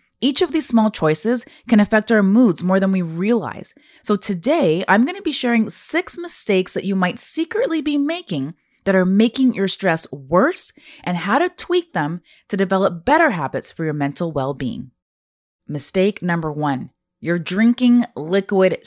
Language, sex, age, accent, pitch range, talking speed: English, female, 30-49, American, 160-235 Hz, 170 wpm